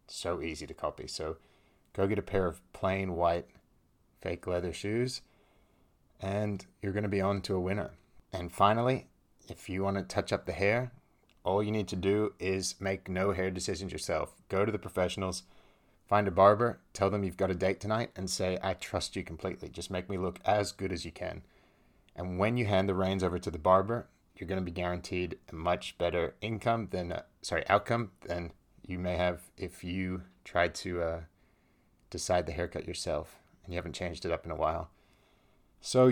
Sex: male